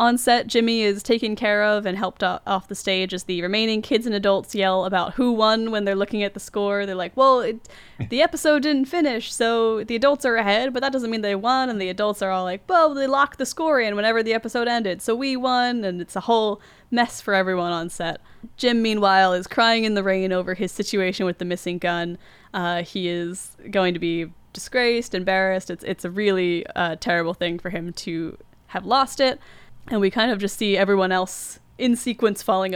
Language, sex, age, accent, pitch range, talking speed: English, female, 10-29, American, 185-230 Hz, 220 wpm